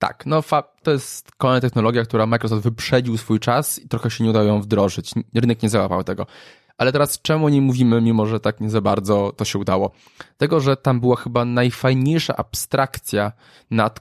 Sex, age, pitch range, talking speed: male, 20-39, 110-135 Hz, 195 wpm